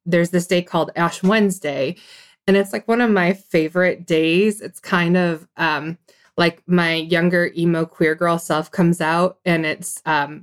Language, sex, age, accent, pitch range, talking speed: English, female, 20-39, American, 170-215 Hz, 175 wpm